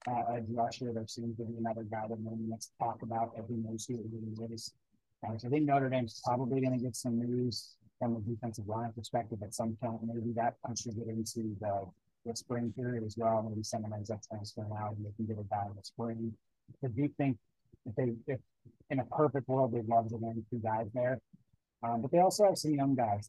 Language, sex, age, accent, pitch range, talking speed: English, male, 30-49, American, 110-120 Hz, 225 wpm